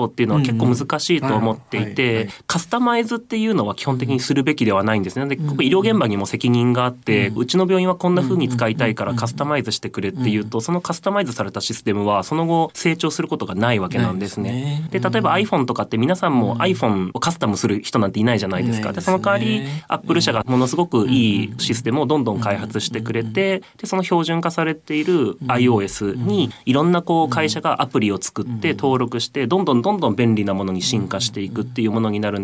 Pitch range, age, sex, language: 110-165 Hz, 30-49, male, Japanese